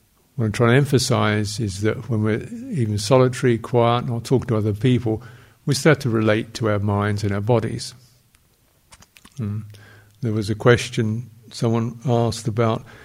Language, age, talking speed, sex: English, 50-69, 160 wpm, male